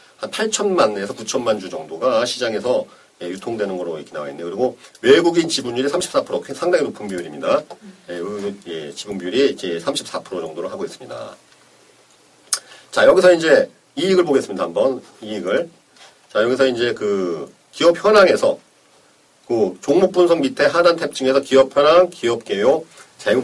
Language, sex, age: Korean, male, 40-59